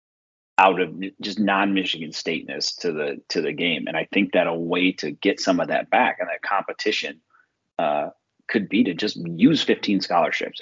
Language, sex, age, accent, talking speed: English, male, 30-49, American, 185 wpm